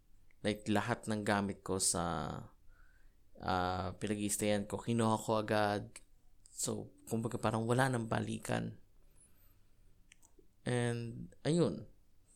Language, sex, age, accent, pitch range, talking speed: Filipino, male, 20-39, native, 95-120 Hz, 95 wpm